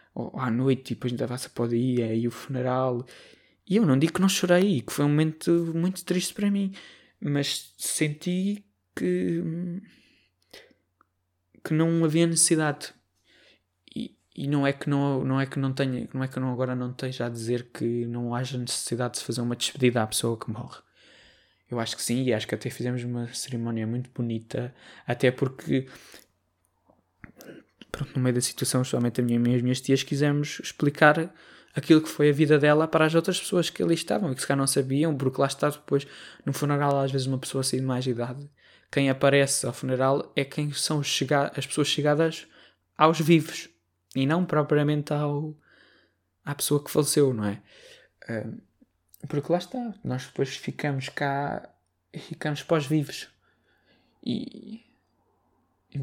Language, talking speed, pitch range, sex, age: Portuguese, 175 wpm, 125-155 Hz, male, 20-39